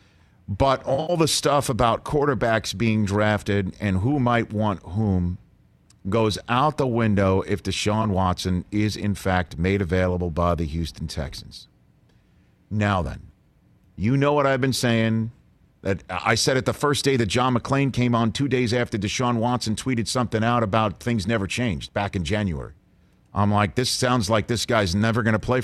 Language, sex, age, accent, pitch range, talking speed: English, male, 50-69, American, 95-125 Hz, 175 wpm